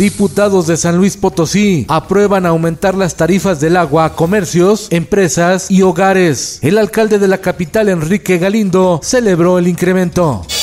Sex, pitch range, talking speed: male, 160-195 Hz, 145 wpm